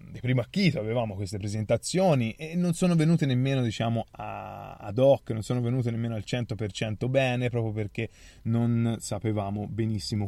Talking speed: 150 wpm